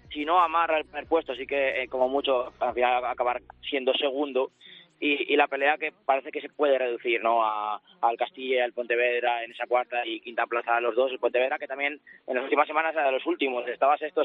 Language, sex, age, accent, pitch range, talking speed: Spanish, male, 20-39, Spanish, 125-150 Hz, 230 wpm